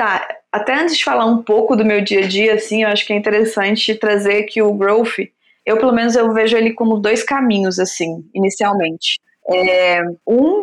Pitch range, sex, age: 200-245 Hz, female, 20-39